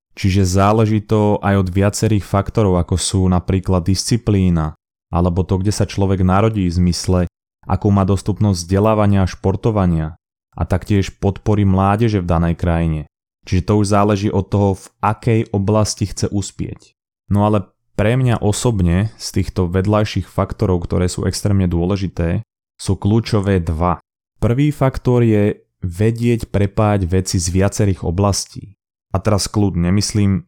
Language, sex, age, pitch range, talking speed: Slovak, male, 20-39, 95-110 Hz, 140 wpm